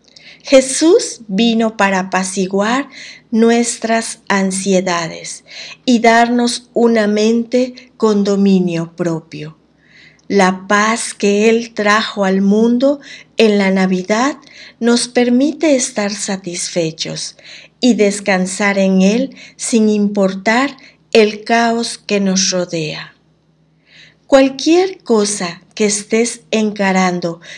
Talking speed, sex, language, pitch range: 95 wpm, female, Spanish, 190-235 Hz